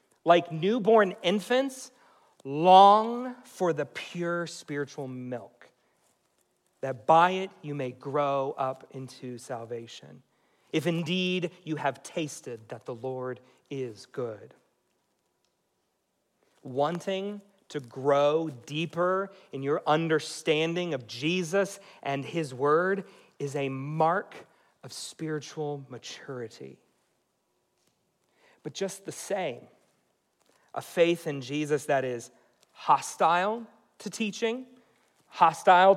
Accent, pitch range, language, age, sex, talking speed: American, 145-200 Hz, English, 40-59, male, 100 wpm